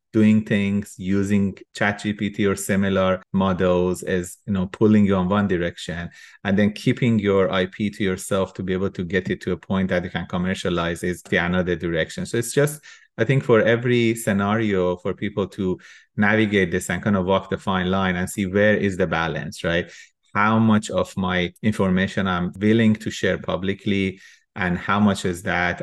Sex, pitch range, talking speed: male, 95-110 Hz, 195 wpm